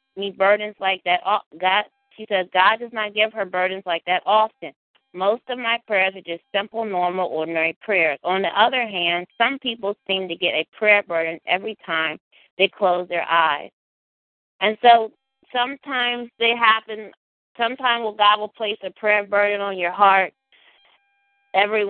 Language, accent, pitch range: English, American, 185-225 Hz